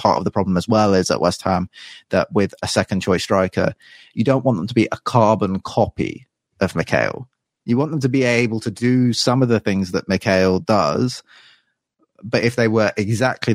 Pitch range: 95-110 Hz